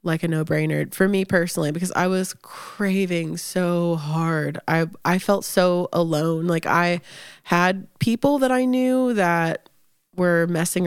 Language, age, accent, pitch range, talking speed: English, 20-39, American, 160-185 Hz, 150 wpm